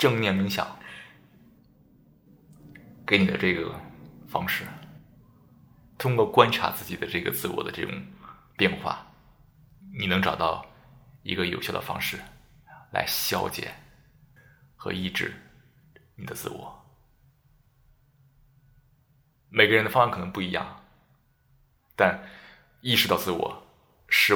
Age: 20-39